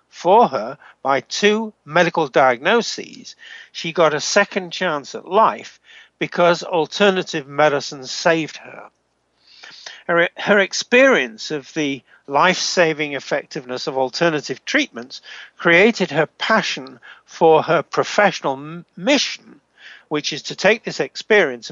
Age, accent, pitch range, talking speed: 60-79, British, 145-195 Hz, 115 wpm